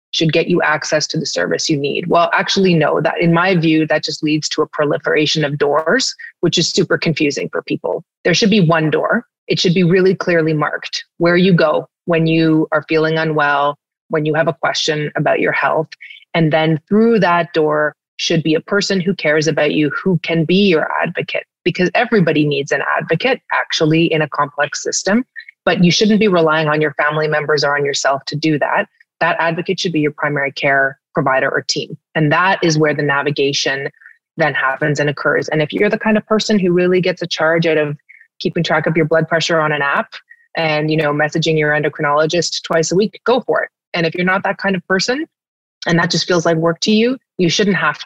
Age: 30-49